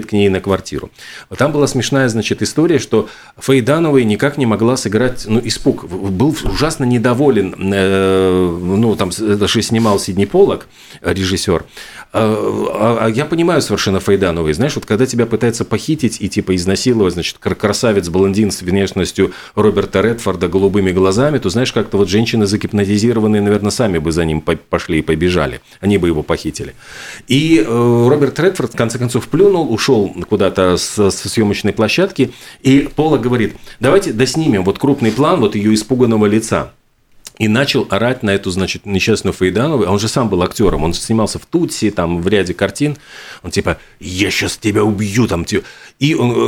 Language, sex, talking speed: Russian, male, 155 wpm